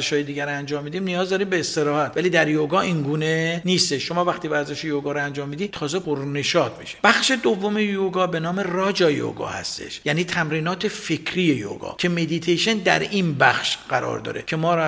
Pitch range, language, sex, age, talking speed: 155-190 Hz, Persian, male, 50-69, 190 wpm